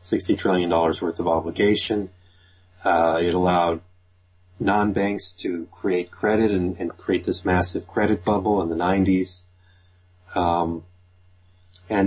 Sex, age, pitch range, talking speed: male, 40-59, 90-95 Hz, 125 wpm